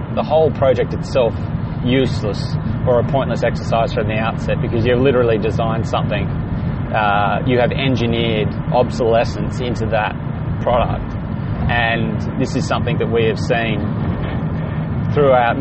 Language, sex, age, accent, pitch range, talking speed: English, male, 20-39, Australian, 110-125 Hz, 130 wpm